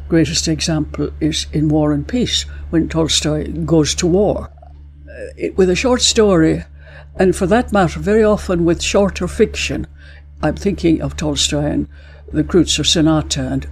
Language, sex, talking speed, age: English, female, 155 wpm, 60-79